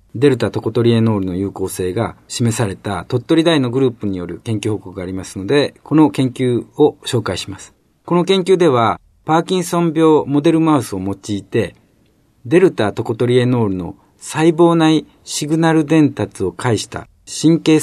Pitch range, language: 100-155 Hz, Japanese